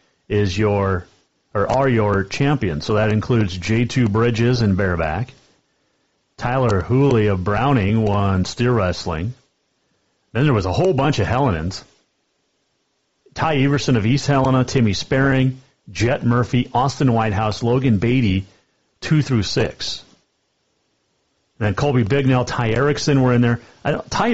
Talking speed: 135 wpm